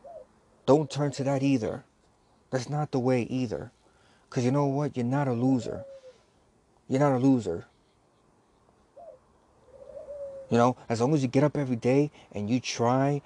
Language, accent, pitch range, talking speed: English, American, 110-135 Hz, 160 wpm